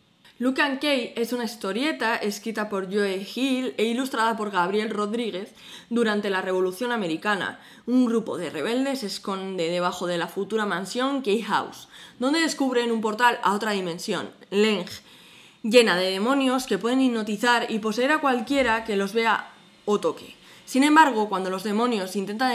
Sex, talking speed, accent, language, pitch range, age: female, 160 wpm, Spanish, Spanish, 200-255 Hz, 20-39